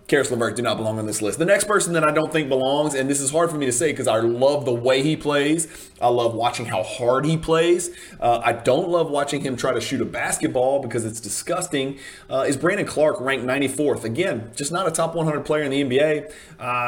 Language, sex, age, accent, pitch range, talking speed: English, male, 30-49, American, 125-150 Hz, 245 wpm